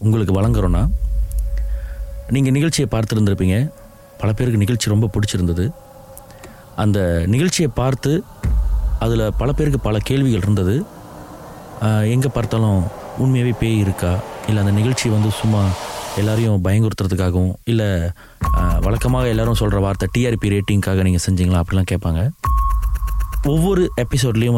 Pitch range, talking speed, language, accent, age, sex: 95-130 Hz, 110 wpm, Tamil, native, 30-49, male